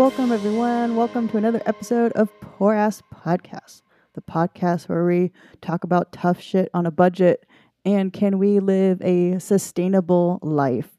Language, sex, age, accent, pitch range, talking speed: English, female, 30-49, American, 165-195 Hz, 155 wpm